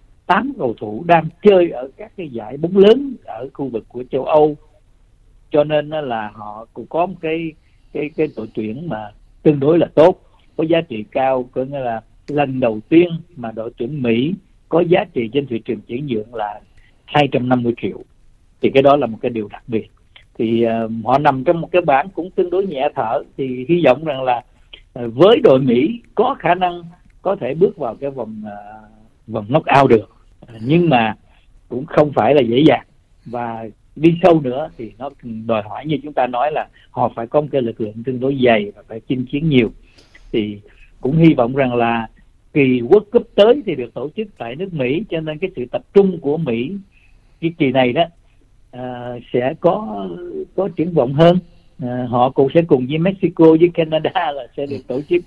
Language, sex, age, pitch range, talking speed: Vietnamese, male, 60-79, 115-165 Hz, 205 wpm